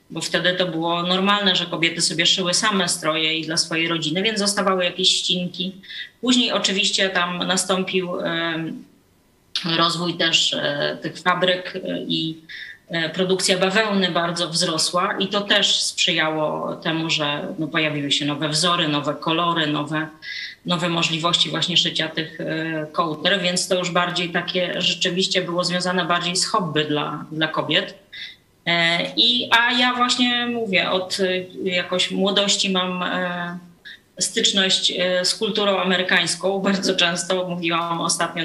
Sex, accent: female, native